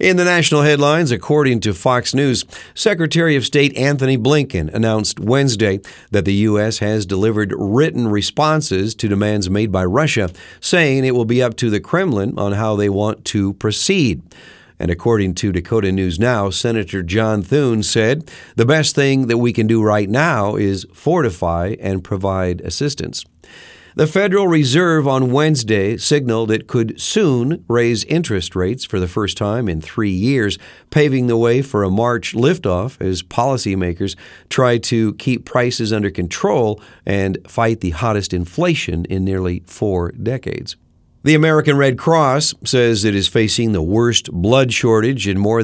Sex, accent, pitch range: male, American, 100-130 Hz